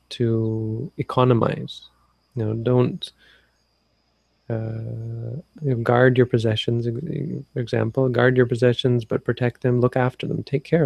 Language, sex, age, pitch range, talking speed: English, male, 20-39, 115-130 Hz, 120 wpm